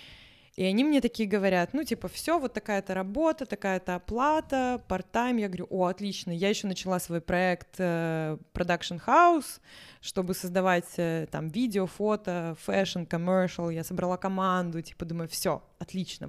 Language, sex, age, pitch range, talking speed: Russian, female, 20-39, 175-220 Hz, 150 wpm